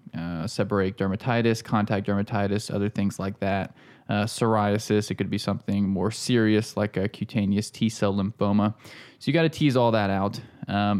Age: 20-39